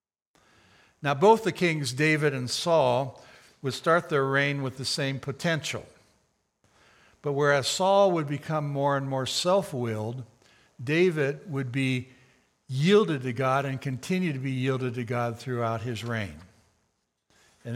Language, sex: English, male